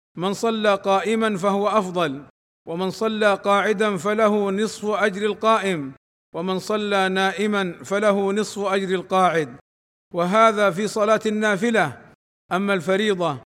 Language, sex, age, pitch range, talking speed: Arabic, male, 50-69, 190-215 Hz, 110 wpm